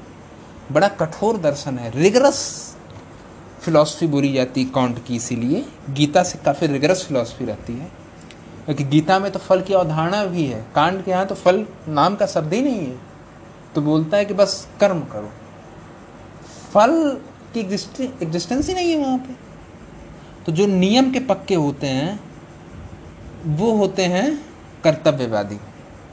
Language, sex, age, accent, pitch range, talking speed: Hindi, male, 30-49, native, 140-195 Hz, 150 wpm